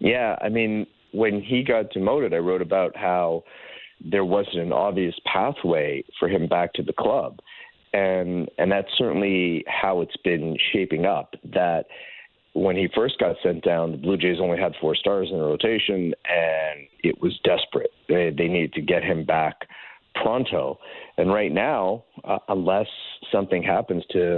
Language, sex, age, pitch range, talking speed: English, male, 50-69, 85-110 Hz, 165 wpm